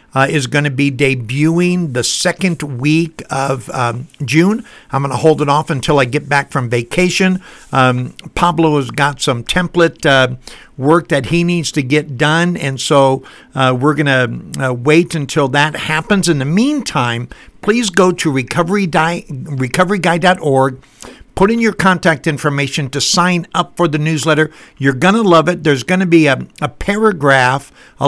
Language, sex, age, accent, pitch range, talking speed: English, male, 60-79, American, 135-170 Hz, 175 wpm